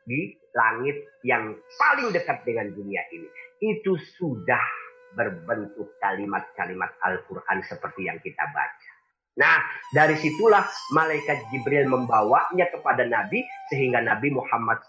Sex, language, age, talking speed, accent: male, Indonesian, 40-59, 115 wpm, native